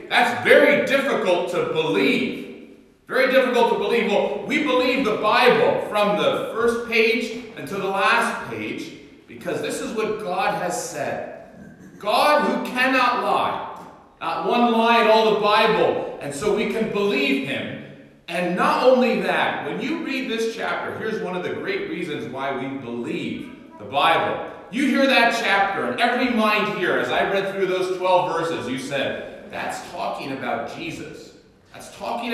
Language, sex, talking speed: English, male, 165 wpm